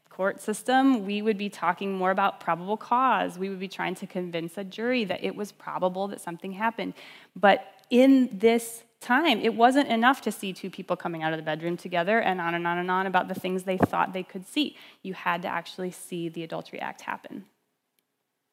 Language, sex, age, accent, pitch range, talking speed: English, female, 20-39, American, 185-255 Hz, 210 wpm